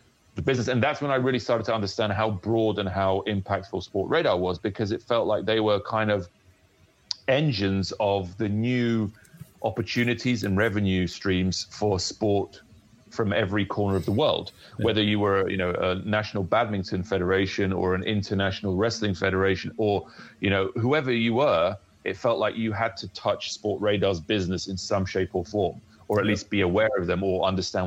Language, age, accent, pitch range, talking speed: English, 30-49, British, 95-110 Hz, 185 wpm